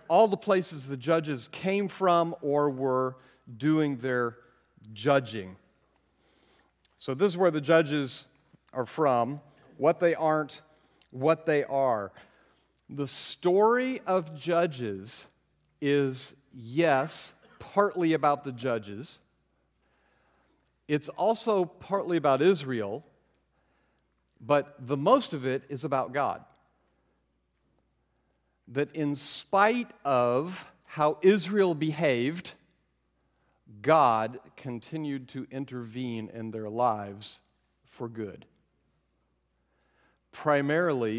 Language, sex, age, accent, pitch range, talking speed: English, male, 50-69, American, 110-155 Hz, 95 wpm